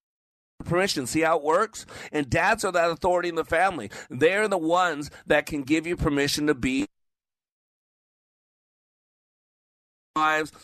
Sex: male